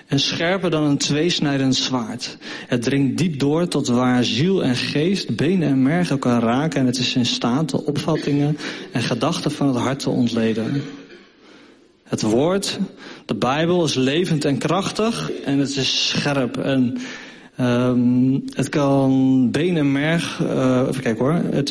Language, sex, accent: Dutch, male, Dutch